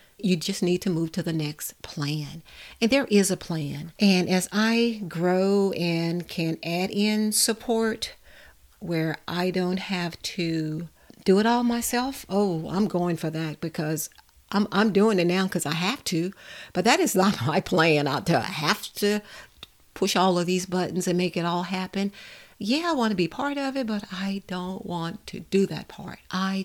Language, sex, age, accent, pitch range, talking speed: English, female, 60-79, American, 165-200 Hz, 185 wpm